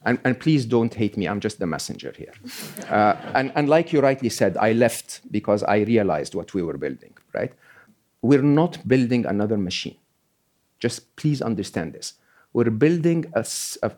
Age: 50-69